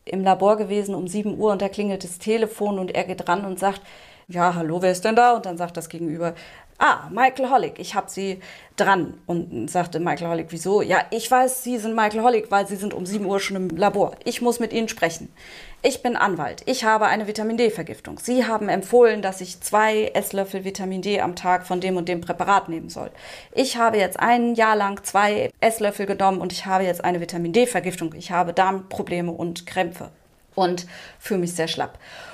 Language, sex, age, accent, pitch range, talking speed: German, female, 30-49, German, 180-220 Hz, 205 wpm